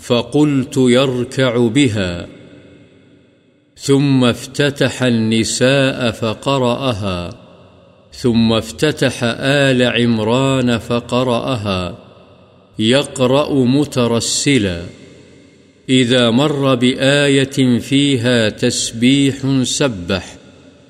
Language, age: Urdu, 50-69